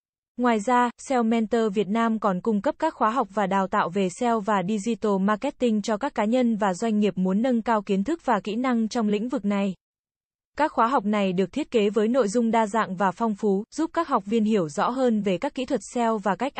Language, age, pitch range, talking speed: Vietnamese, 20-39, 205-245 Hz, 245 wpm